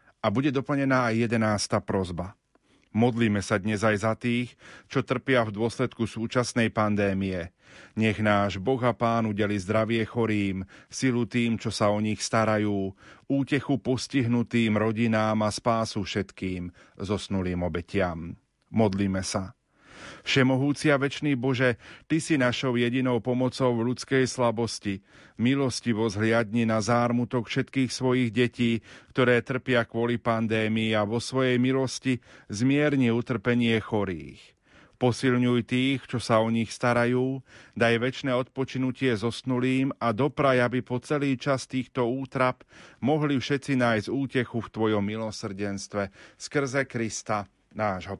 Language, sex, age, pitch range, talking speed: Slovak, male, 40-59, 105-130 Hz, 125 wpm